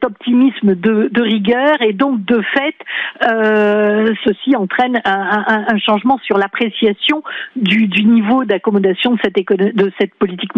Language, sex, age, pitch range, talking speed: French, female, 50-69, 200-240 Hz, 140 wpm